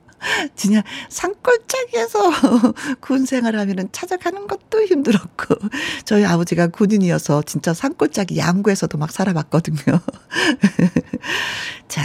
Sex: female